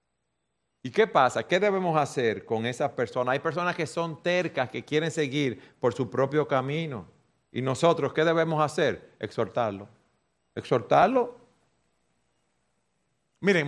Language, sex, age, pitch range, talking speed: Spanish, male, 50-69, 125-180 Hz, 125 wpm